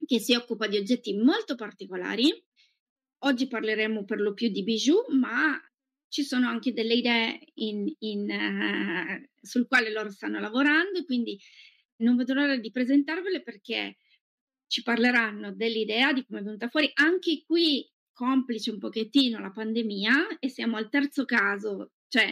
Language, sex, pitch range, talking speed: Italian, female, 215-270 Hz, 150 wpm